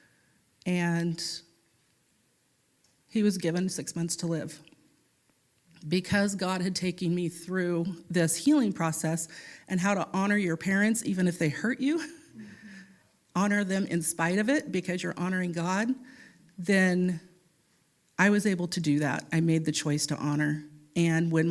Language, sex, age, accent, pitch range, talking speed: English, female, 40-59, American, 160-190 Hz, 150 wpm